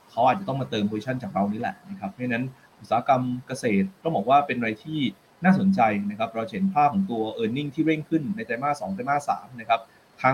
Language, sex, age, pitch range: Thai, male, 20-39, 115-170 Hz